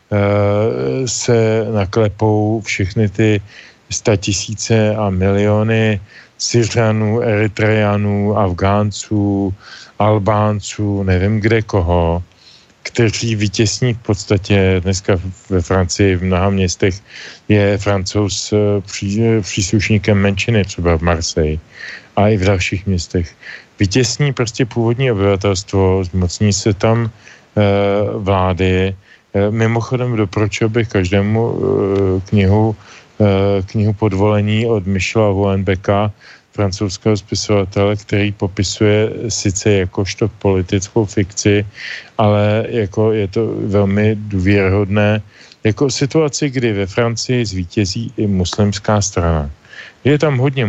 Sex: male